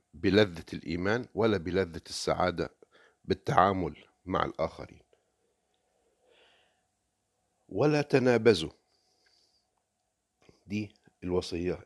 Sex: male